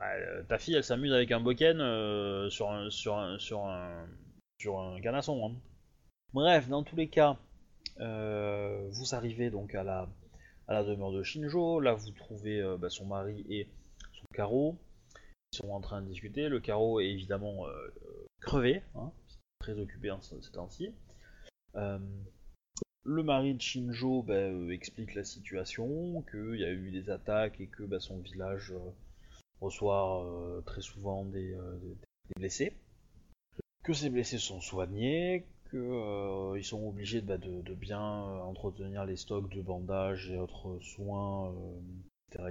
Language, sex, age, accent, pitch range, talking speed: French, male, 20-39, French, 95-120 Hz, 165 wpm